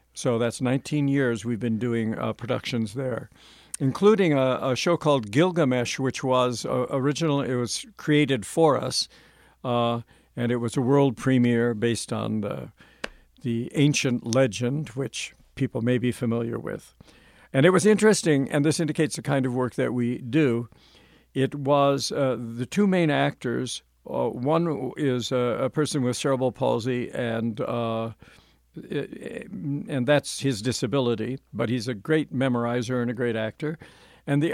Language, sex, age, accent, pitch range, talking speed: English, male, 60-79, American, 120-145 Hz, 160 wpm